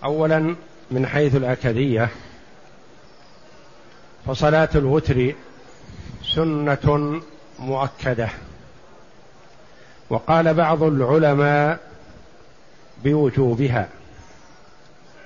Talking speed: 45 wpm